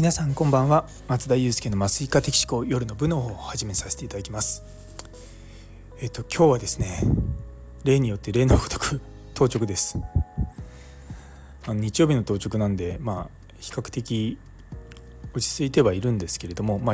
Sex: male